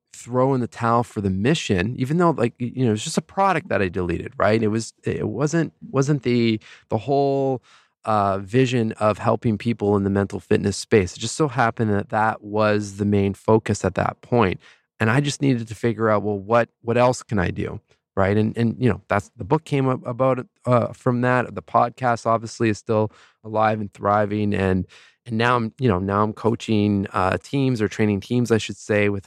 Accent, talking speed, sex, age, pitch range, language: American, 215 wpm, male, 20-39, 100-120 Hz, English